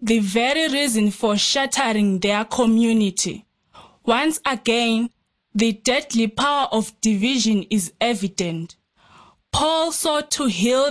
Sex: female